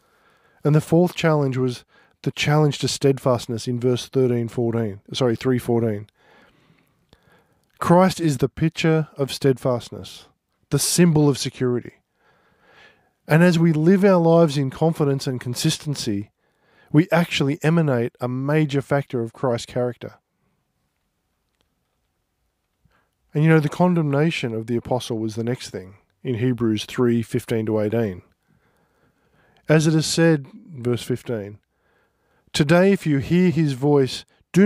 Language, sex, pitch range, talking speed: English, male, 120-160 Hz, 130 wpm